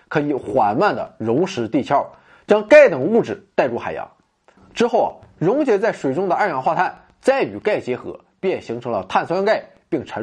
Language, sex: Chinese, male